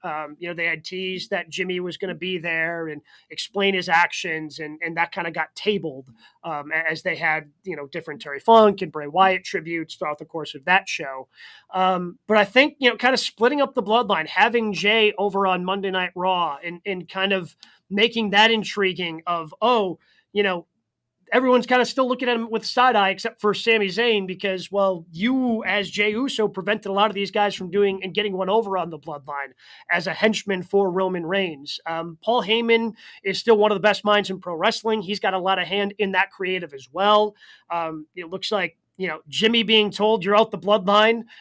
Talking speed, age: 215 wpm, 30-49